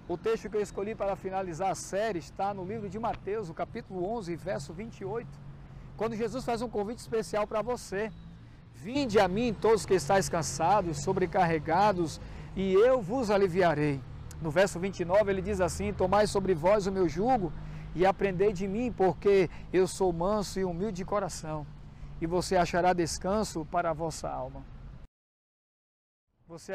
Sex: male